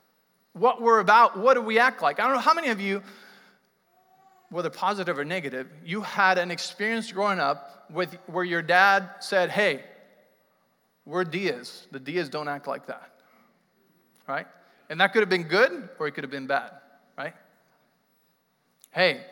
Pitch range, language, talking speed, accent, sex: 170-210 Hz, English, 170 wpm, American, male